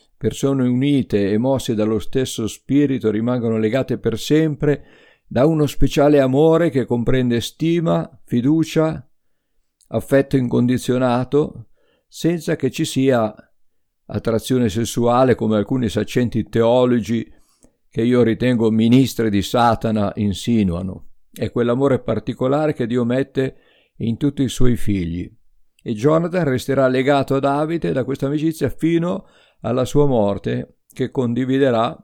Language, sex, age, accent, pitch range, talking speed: Italian, male, 50-69, native, 110-140 Hz, 120 wpm